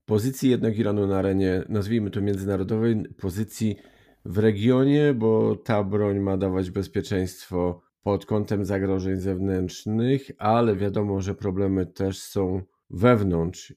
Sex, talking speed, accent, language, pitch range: male, 120 wpm, native, Polish, 95-110 Hz